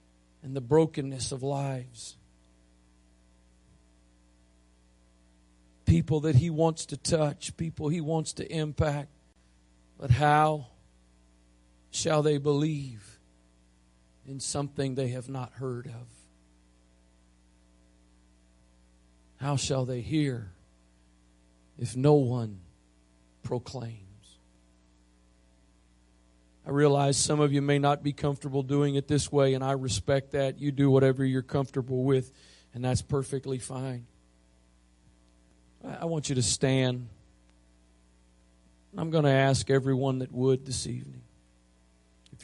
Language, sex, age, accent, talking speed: English, male, 40-59, American, 110 wpm